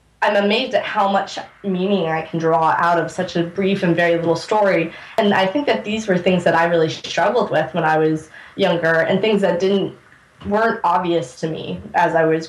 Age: 20-39